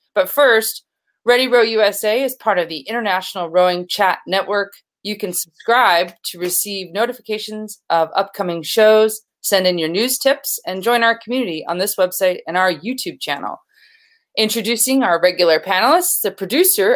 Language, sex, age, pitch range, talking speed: English, female, 30-49, 180-235 Hz, 155 wpm